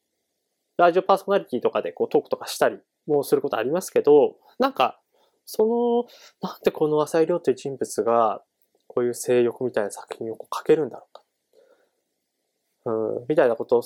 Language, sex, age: Japanese, male, 20-39